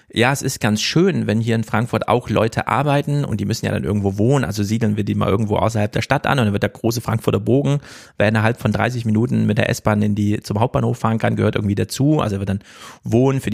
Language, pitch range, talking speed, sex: German, 105-125 Hz, 255 wpm, male